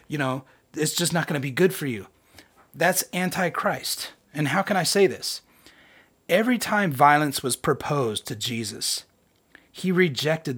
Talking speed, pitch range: 160 wpm, 135-190 Hz